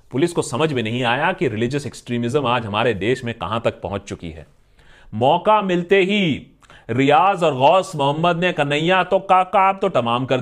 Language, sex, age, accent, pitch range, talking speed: Hindi, male, 40-59, native, 120-200 Hz, 175 wpm